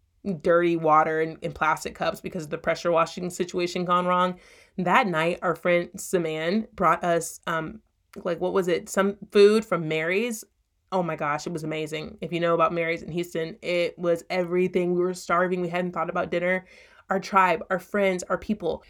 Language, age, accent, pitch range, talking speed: English, 30-49, American, 170-210 Hz, 190 wpm